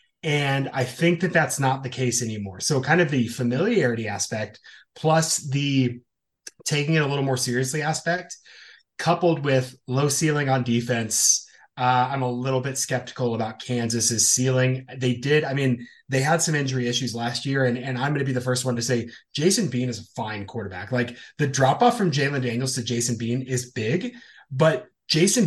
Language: English